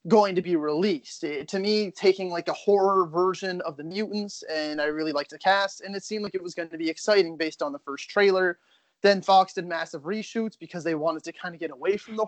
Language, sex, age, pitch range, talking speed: English, male, 20-39, 160-195 Hz, 245 wpm